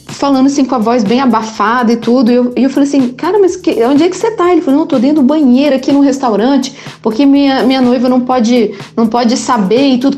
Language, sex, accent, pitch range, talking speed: Portuguese, female, Brazilian, 225-275 Hz, 270 wpm